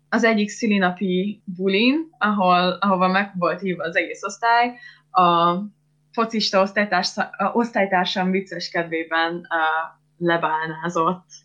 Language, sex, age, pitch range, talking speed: Hungarian, female, 20-39, 170-210 Hz, 110 wpm